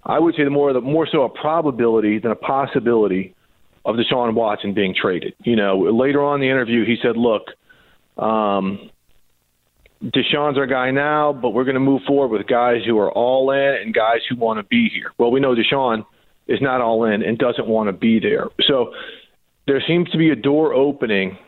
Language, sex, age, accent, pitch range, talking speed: English, male, 40-59, American, 115-150 Hz, 205 wpm